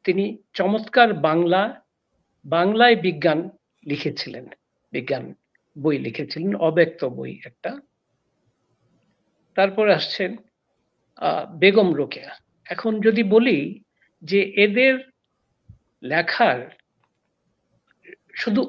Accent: native